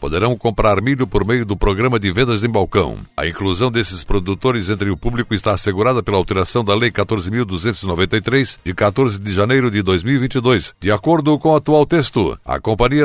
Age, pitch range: 60-79, 100-125 Hz